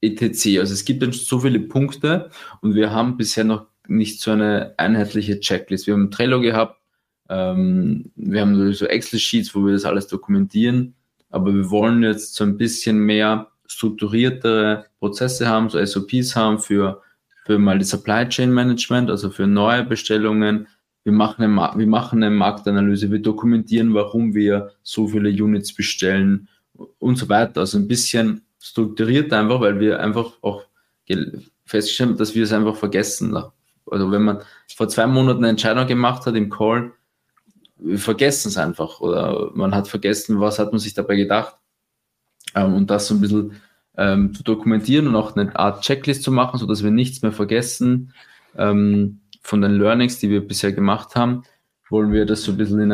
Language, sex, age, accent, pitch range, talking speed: German, male, 20-39, German, 105-120 Hz, 170 wpm